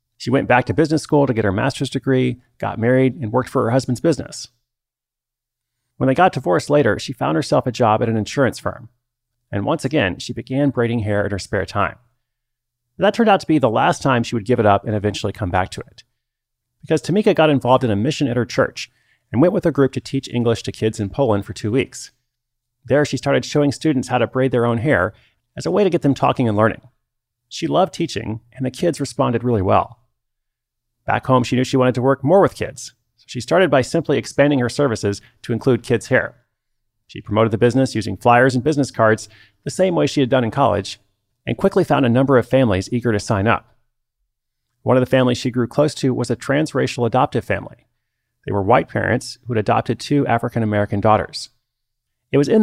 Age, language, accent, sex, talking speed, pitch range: 30-49, English, American, male, 220 wpm, 115-140 Hz